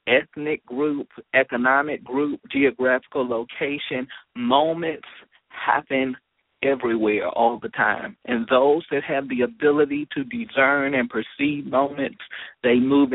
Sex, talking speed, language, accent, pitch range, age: male, 115 wpm, English, American, 120-140 Hz, 40-59